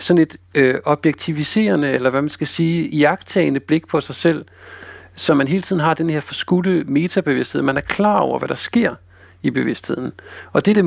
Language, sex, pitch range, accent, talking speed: Danish, male, 130-170 Hz, native, 200 wpm